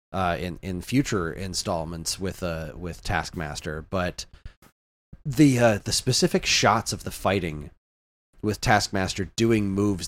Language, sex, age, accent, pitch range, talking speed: English, male, 30-49, American, 95-115 Hz, 130 wpm